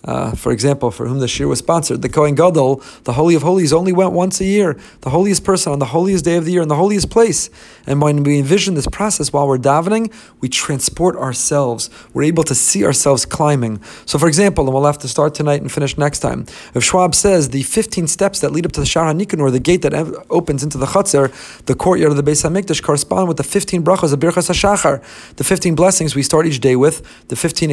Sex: male